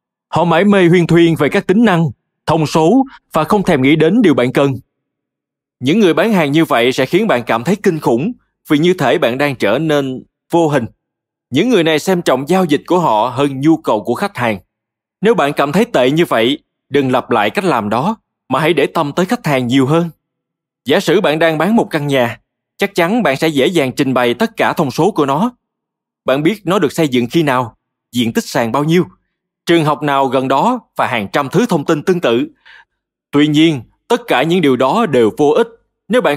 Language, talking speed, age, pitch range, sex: Vietnamese, 230 wpm, 20-39, 135-200 Hz, male